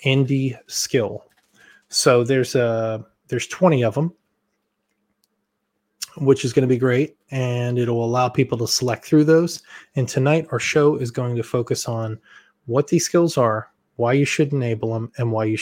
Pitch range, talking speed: 120-135 Hz, 175 wpm